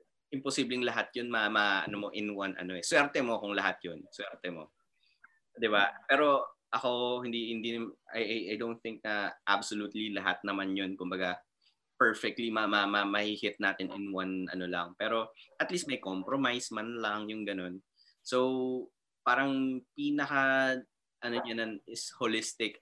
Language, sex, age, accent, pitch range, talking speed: Filipino, male, 20-39, native, 95-115 Hz, 155 wpm